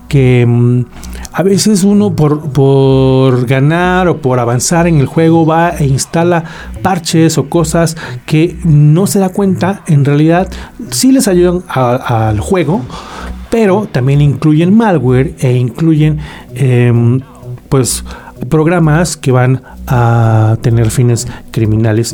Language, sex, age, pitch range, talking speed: Spanish, male, 40-59, 125-165 Hz, 130 wpm